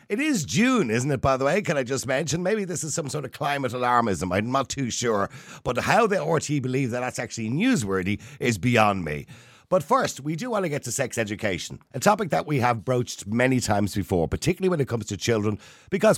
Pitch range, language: 100-150 Hz, English